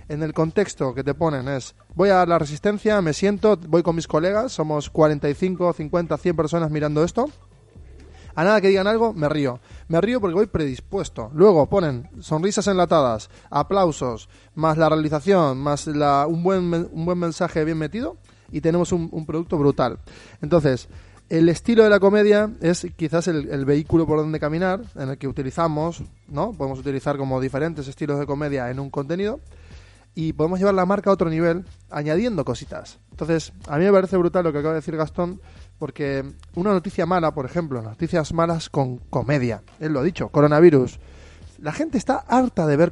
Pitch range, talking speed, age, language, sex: 135-180 Hz, 185 wpm, 20-39, Spanish, male